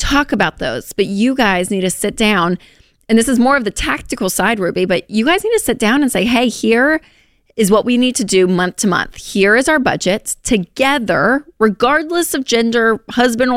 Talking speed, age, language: 210 wpm, 30-49, English